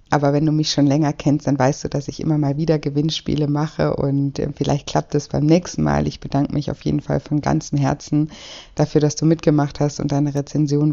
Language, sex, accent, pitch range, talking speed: German, female, German, 140-155 Hz, 225 wpm